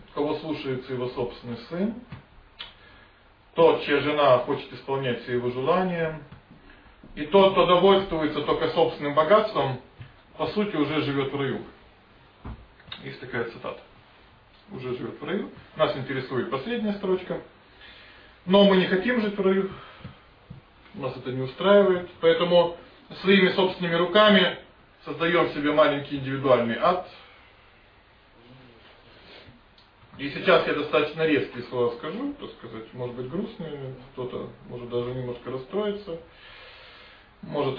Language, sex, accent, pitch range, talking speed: Russian, male, native, 130-185 Hz, 120 wpm